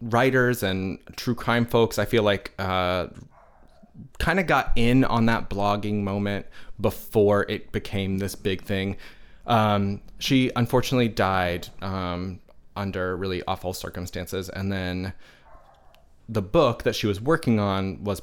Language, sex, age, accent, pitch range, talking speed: English, male, 20-39, American, 95-120 Hz, 140 wpm